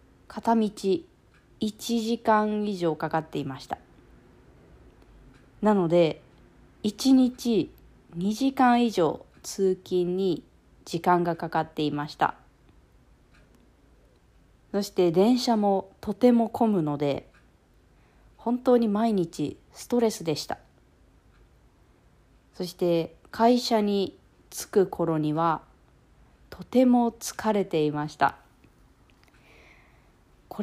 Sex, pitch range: female, 165-225 Hz